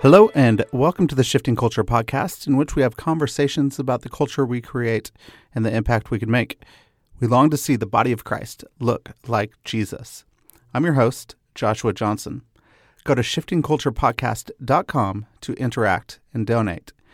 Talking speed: 165 wpm